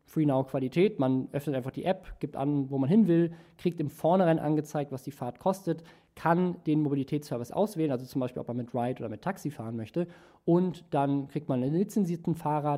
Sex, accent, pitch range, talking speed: male, German, 125-170 Hz, 205 wpm